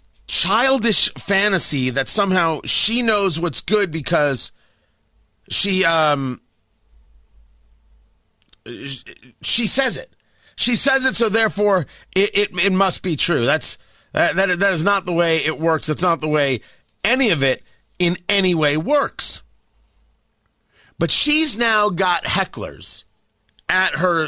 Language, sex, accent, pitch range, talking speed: English, male, American, 135-200 Hz, 125 wpm